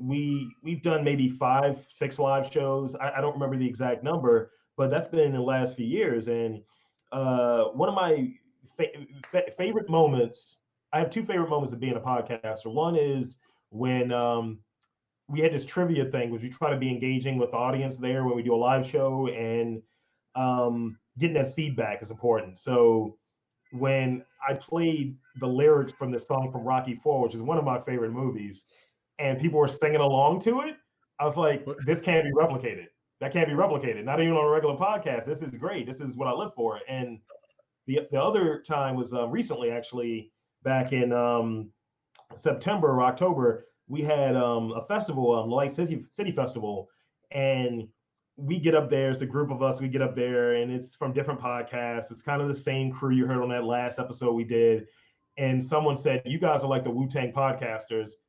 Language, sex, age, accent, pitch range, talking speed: English, male, 30-49, American, 120-150 Hz, 200 wpm